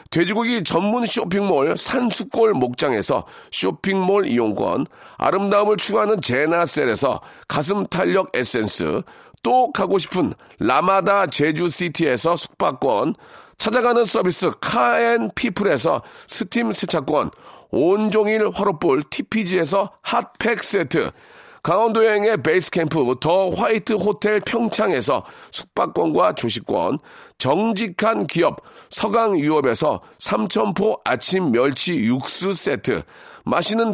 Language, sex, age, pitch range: Korean, male, 40-59, 180-230 Hz